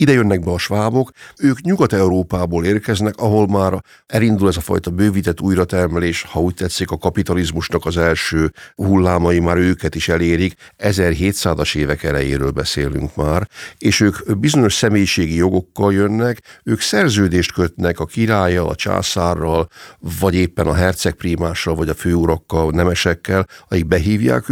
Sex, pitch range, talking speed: male, 85-105 Hz, 140 wpm